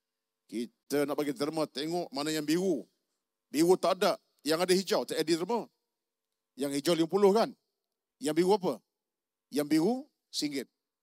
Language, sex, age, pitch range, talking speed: Malay, male, 50-69, 150-205 Hz, 150 wpm